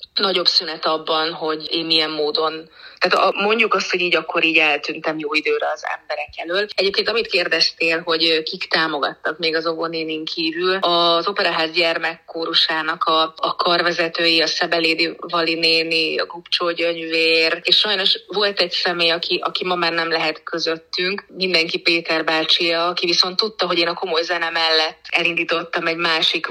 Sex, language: female, Hungarian